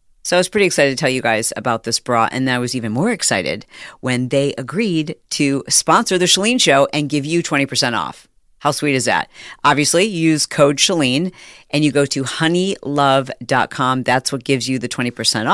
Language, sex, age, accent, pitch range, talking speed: English, female, 40-59, American, 130-170 Hz, 195 wpm